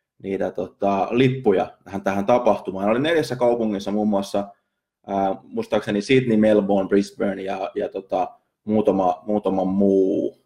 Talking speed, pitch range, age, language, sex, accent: 125 wpm, 100-120 Hz, 20-39, Finnish, male, native